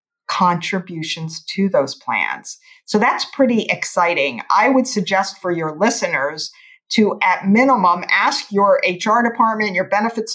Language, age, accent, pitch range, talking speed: English, 50-69, American, 185-245 Hz, 135 wpm